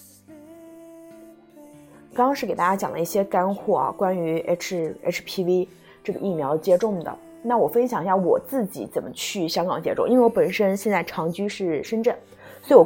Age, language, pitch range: 20-39, Chinese, 170-225 Hz